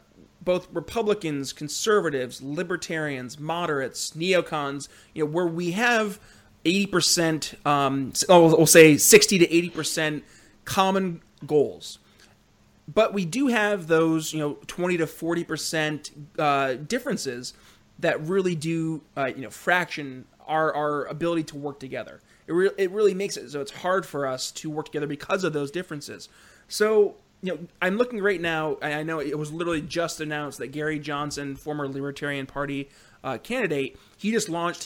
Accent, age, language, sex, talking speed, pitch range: American, 30-49, English, male, 150 wpm, 145-175 Hz